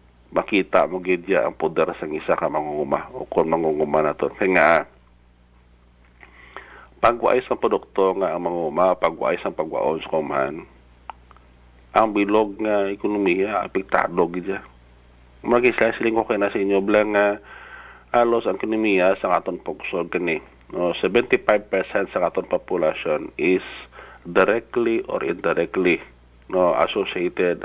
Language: Filipino